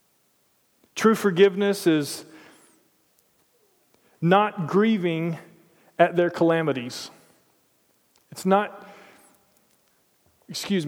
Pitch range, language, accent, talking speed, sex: 155-195 Hz, English, American, 60 wpm, male